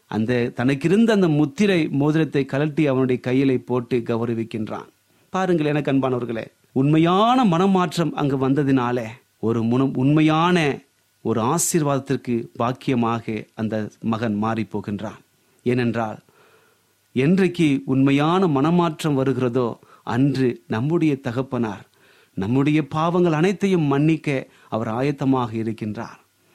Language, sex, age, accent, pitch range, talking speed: Tamil, male, 30-49, native, 125-170 Hz, 95 wpm